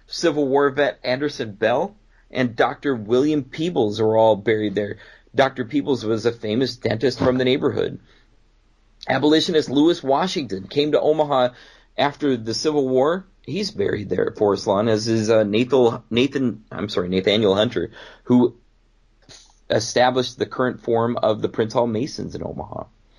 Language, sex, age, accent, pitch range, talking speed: English, male, 30-49, American, 105-140 Hz, 140 wpm